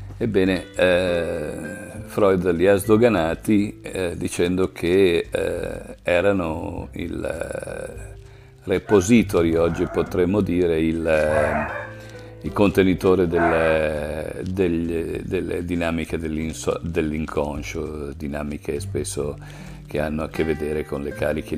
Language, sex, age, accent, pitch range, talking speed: Italian, male, 50-69, native, 80-100 Hz, 100 wpm